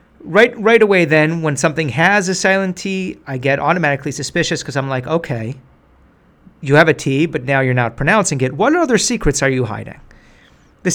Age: 40-59